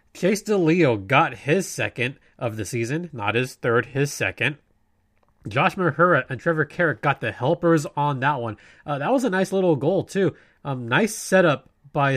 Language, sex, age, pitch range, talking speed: English, male, 20-39, 120-165 Hz, 180 wpm